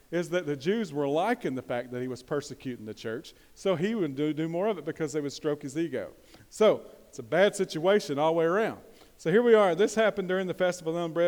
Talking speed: 255 wpm